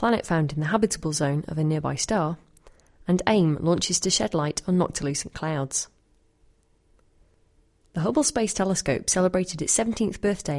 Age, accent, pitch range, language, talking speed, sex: 30-49, British, 150-205 Hz, English, 155 wpm, female